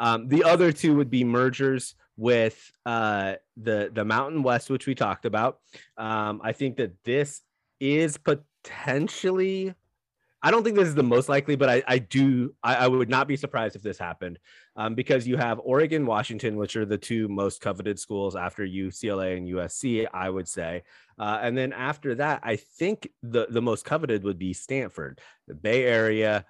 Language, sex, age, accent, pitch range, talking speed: English, male, 30-49, American, 105-130 Hz, 185 wpm